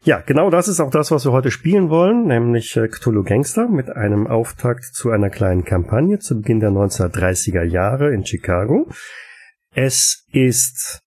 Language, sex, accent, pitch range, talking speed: German, male, German, 105-140 Hz, 165 wpm